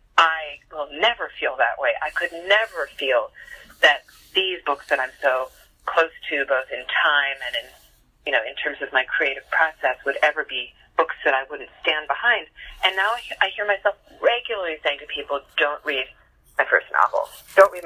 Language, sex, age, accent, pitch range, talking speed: English, female, 30-49, American, 135-160 Hz, 190 wpm